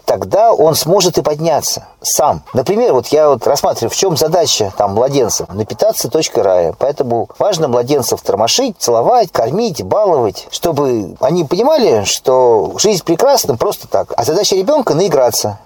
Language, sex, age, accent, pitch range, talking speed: Russian, male, 40-59, native, 135-200 Hz, 150 wpm